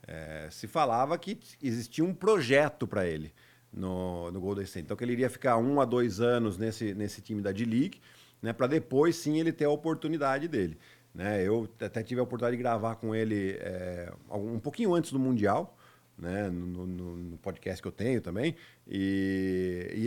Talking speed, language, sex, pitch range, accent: 180 wpm, Portuguese, male, 105-130 Hz, Brazilian